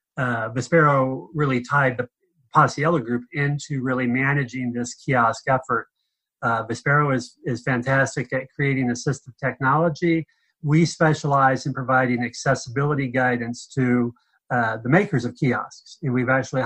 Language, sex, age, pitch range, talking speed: English, male, 30-49, 125-150 Hz, 135 wpm